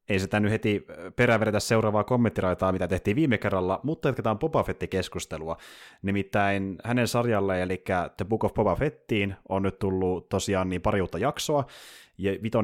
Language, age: Finnish, 20-39